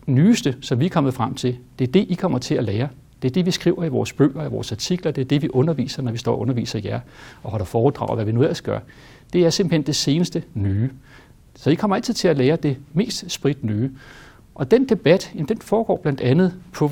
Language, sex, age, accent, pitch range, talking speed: Danish, male, 60-79, native, 125-170 Hz, 255 wpm